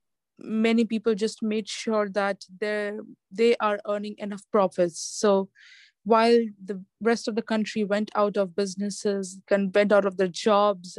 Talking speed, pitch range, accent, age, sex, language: 160 wpm, 195-225 Hz, Indian, 20-39, female, English